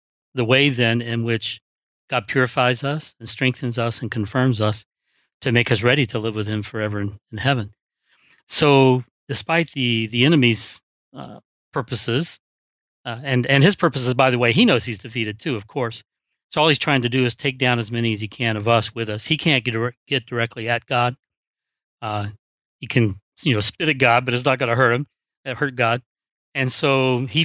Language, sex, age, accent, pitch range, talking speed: English, male, 40-59, American, 115-130 Hz, 205 wpm